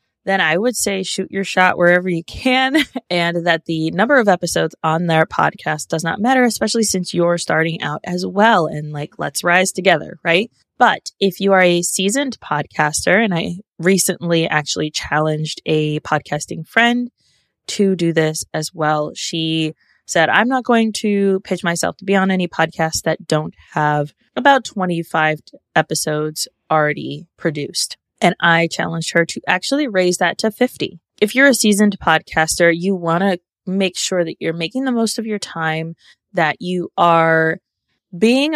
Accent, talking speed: American, 170 wpm